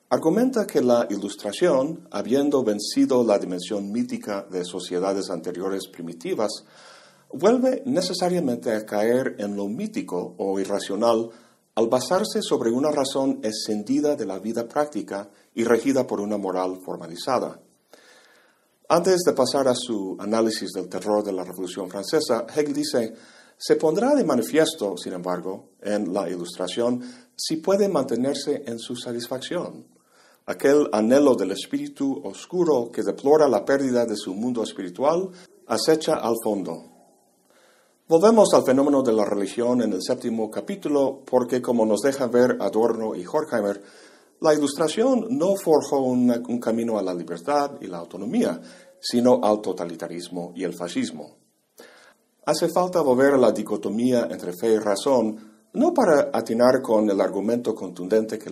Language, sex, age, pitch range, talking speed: Spanish, male, 50-69, 100-150 Hz, 140 wpm